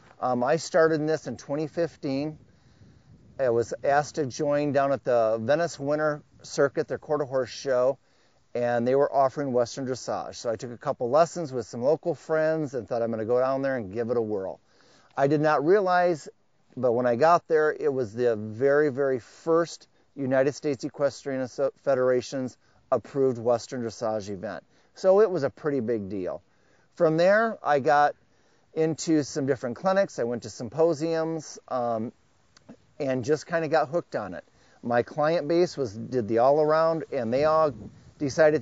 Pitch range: 125-155 Hz